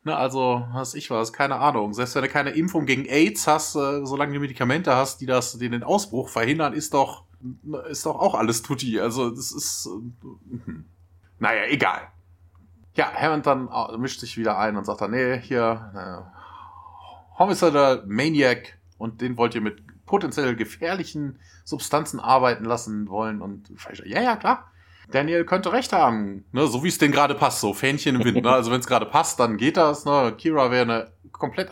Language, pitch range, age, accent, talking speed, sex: German, 105-140 Hz, 30-49, German, 180 wpm, male